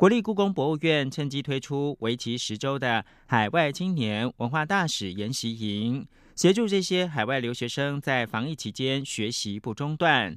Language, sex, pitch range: Chinese, male, 120-165 Hz